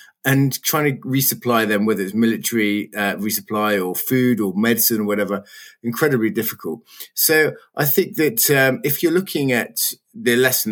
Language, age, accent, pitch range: English, 30-49, British, 110-140 Hz